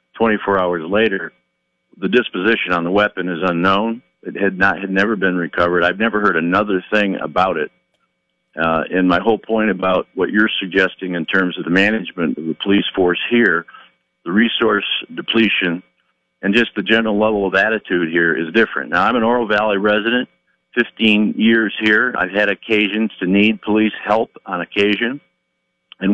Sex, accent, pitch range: male, American, 90-105 Hz